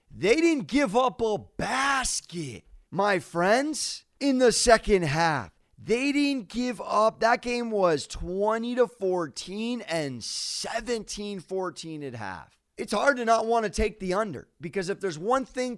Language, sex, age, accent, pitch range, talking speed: English, male, 30-49, American, 180-230 Hz, 150 wpm